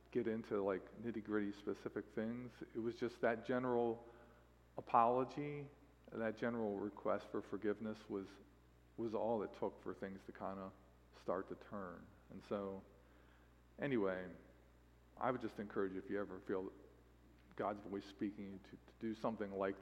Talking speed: 150 wpm